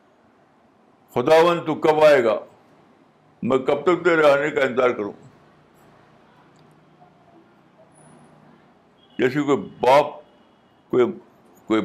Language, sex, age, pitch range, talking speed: Urdu, male, 60-79, 145-185 Hz, 85 wpm